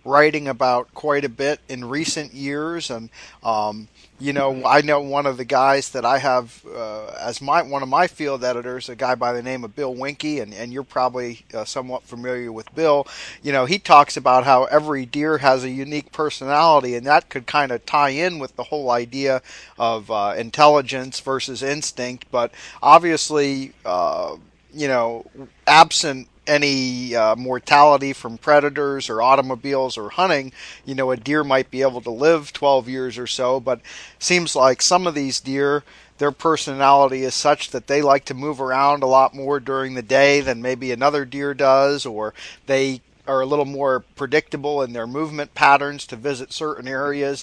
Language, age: English, 40-59